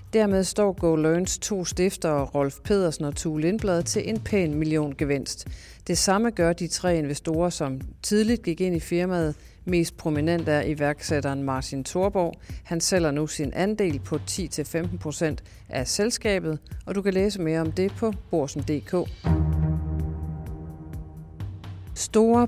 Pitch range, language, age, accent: 145-185 Hz, Danish, 40-59, native